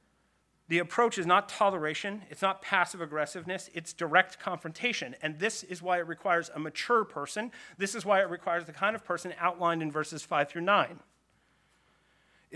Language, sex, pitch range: English, male, 165-195 Hz